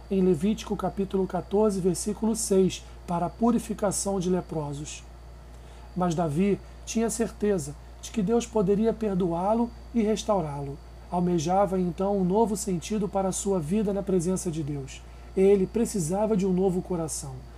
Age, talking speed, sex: 40-59, 140 wpm, male